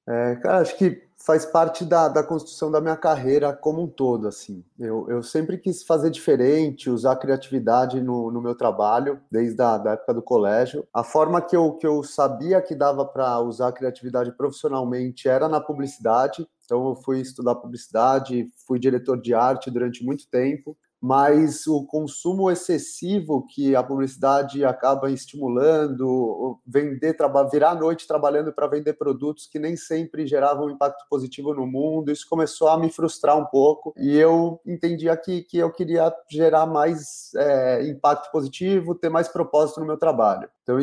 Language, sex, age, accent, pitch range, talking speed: Portuguese, male, 20-39, Brazilian, 125-155 Hz, 170 wpm